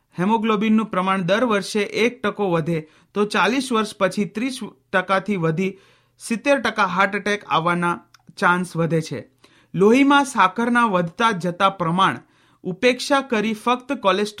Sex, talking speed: male, 65 wpm